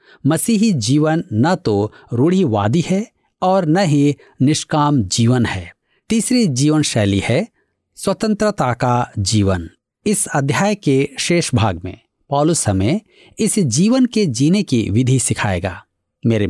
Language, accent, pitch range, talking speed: Hindi, native, 115-180 Hz, 125 wpm